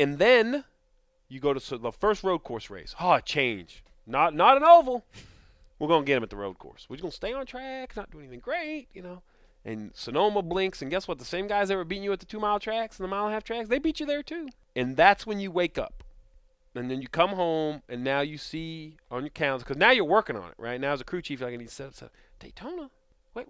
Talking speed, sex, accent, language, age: 275 wpm, male, American, English, 30-49